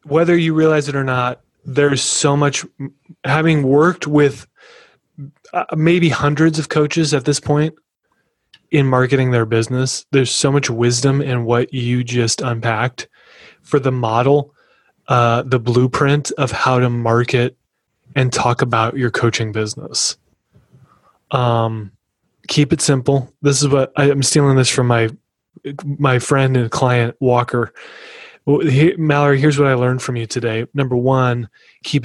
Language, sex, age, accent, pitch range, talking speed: English, male, 20-39, American, 120-145 Hz, 150 wpm